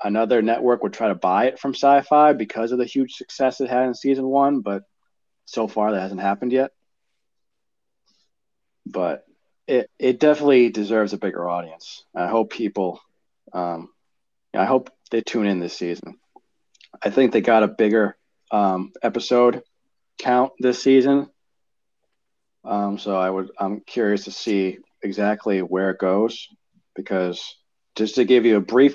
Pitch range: 100-130 Hz